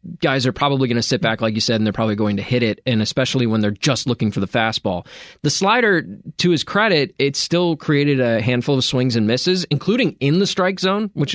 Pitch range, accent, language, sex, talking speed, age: 115-140 Hz, American, English, male, 245 wpm, 20-39